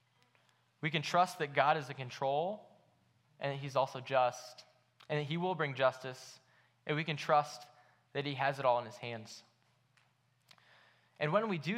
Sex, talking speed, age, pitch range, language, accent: male, 180 wpm, 10-29, 125-155 Hz, English, American